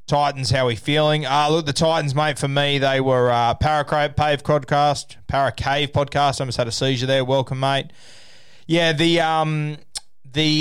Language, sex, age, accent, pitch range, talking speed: English, male, 20-39, Australian, 115-150 Hz, 185 wpm